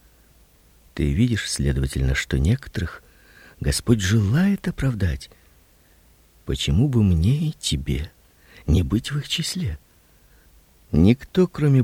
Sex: male